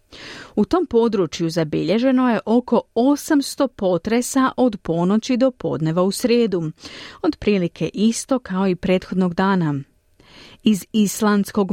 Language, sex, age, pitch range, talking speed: Croatian, female, 40-59, 150-225 Hz, 115 wpm